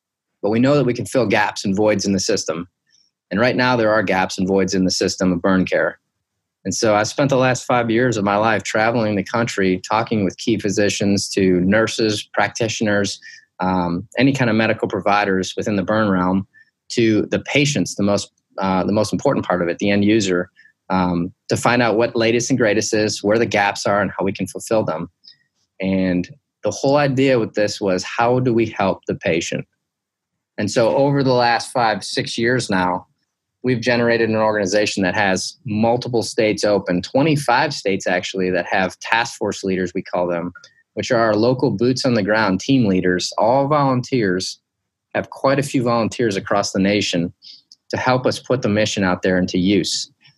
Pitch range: 95-120 Hz